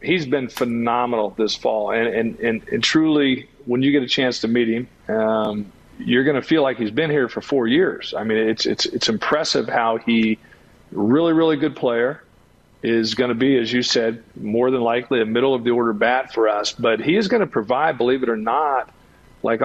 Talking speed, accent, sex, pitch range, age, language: 215 wpm, American, male, 115-130 Hz, 40-59, English